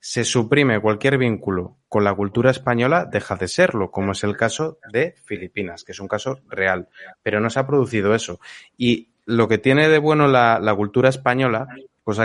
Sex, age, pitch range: male, 20-39, 110-135 Hz